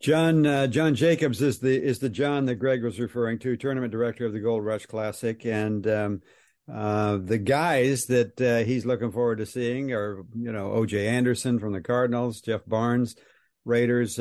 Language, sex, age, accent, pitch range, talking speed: English, male, 60-79, American, 115-135 Hz, 185 wpm